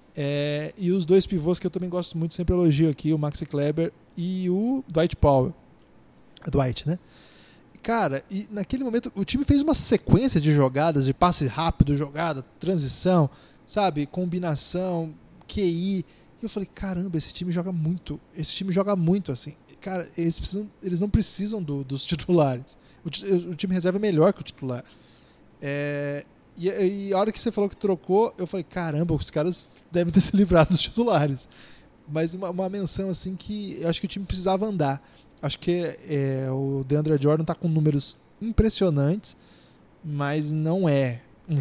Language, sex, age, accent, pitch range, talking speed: Portuguese, male, 20-39, Brazilian, 145-185 Hz, 175 wpm